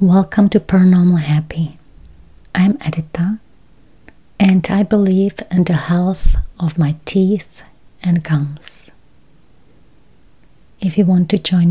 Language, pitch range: English, 160-190 Hz